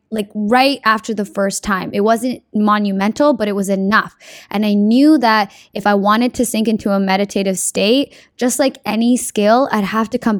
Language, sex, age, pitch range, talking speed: English, female, 10-29, 205-250 Hz, 195 wpm